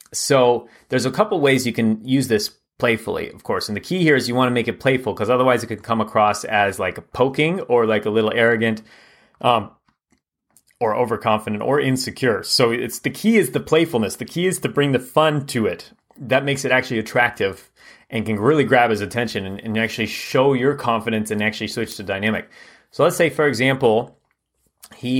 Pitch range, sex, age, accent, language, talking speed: 110-140 Hz, male, 30-49, American, English, 205 wpm